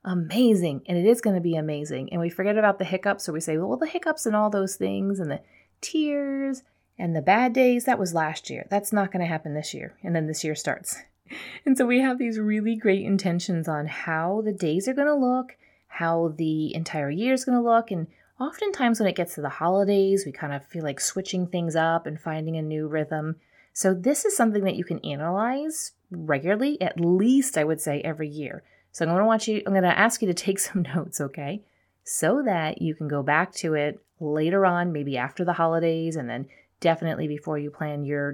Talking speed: 225 wpm